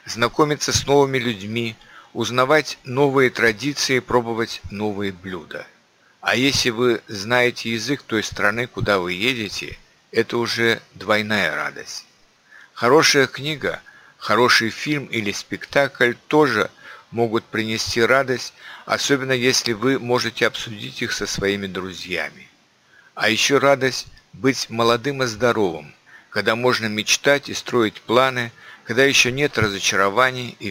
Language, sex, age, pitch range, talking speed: Ukrainian, male, 50-69, 110-135 Hz, 120 wpm